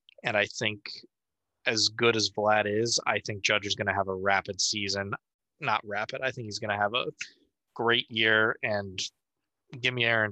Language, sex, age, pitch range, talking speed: English, male, 20-39, 100-115 Hz, 190 wpm